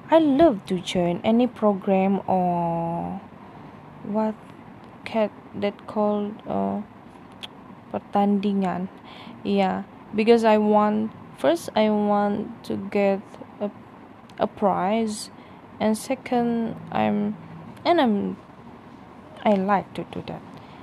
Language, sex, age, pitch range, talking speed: English, female, 20-39, 205-240 Hz, 100 wpm